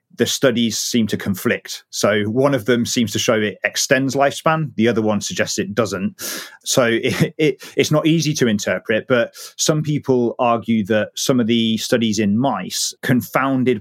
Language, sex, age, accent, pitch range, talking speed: English, male, 30-49, British, 105-125 Hz, 170 wpm